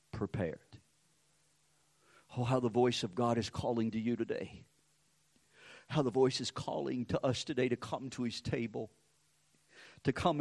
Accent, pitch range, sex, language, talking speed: American, 135-215 Hz, male, English, 155 wpm